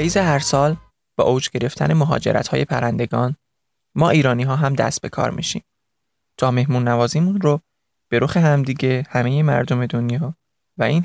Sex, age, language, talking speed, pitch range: male, 20-39, Persian, 150 wpm, 125-155 Hz